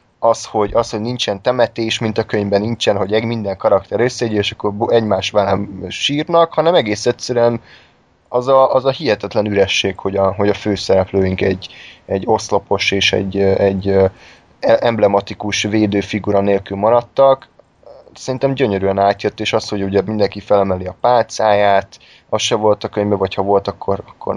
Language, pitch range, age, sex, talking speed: Hungarian, 100-120 Hz, 20-39, male, 160 wpm